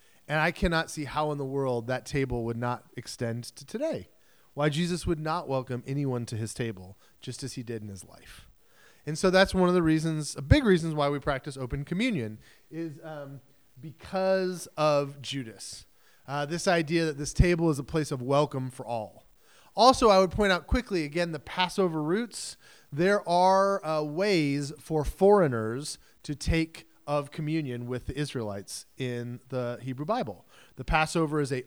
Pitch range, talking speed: 125-175 Hz, 180 wpm